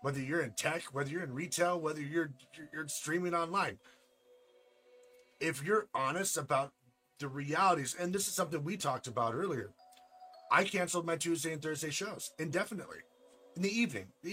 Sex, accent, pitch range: male, American, 135-185 Hz